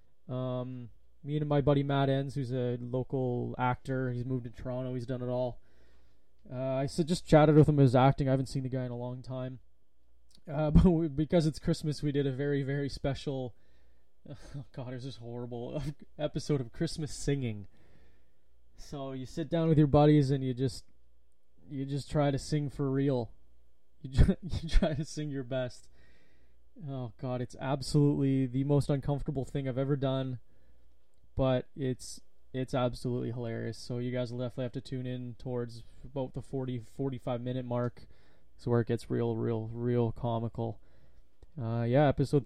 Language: English